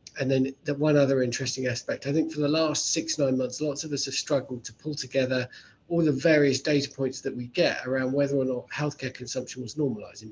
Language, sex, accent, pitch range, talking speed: English, male, British, 120-145 Hz, 225 wpm